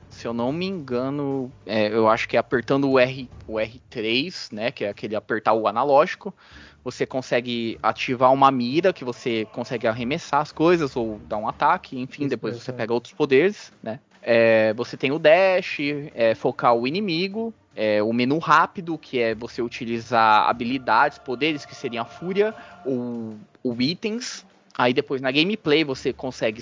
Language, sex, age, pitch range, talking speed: Portuguese, male, 20-39, 120-155 Hz, 155 wpm